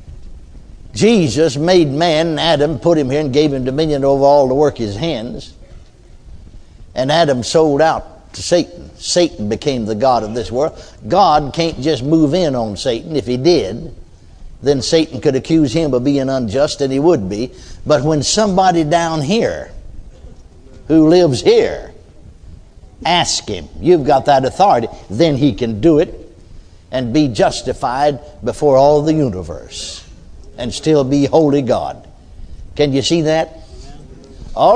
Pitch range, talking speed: 130-195 Hz, 150 wpm